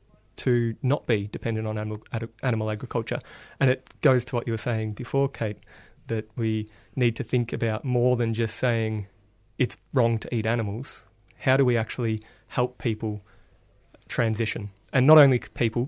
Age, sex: 30-49, male